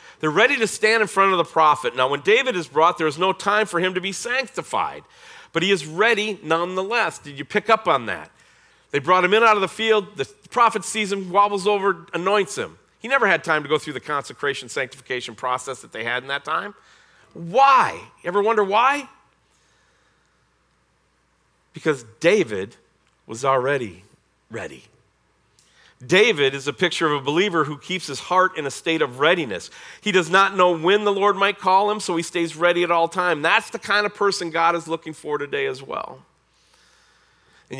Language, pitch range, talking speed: English, 155-215 Hz, 195 wpm